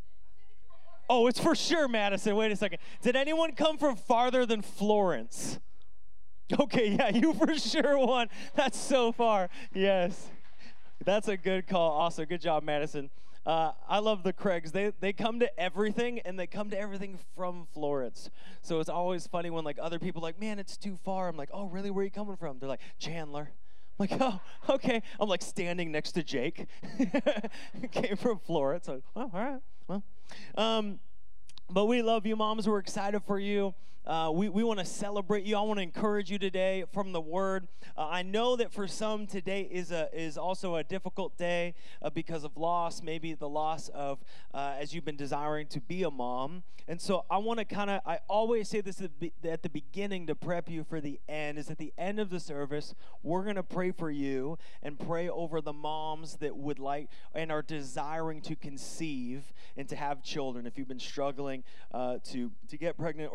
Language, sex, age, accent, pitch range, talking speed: English, male, 20-39, American, 155-210 Hz, 200 wpm